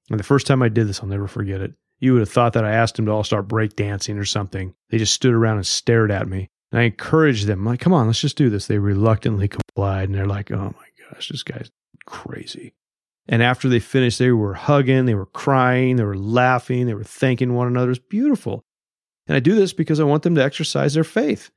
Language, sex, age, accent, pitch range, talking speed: English, male, 30-49, American, 105-135 Hz, 245 wpm